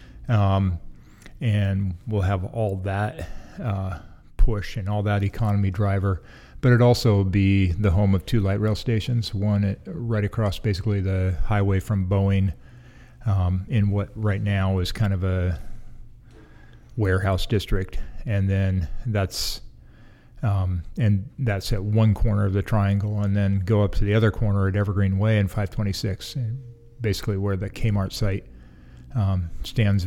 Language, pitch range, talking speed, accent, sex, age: English, 95-110 Hz, 150 wpm, American, male, 40-59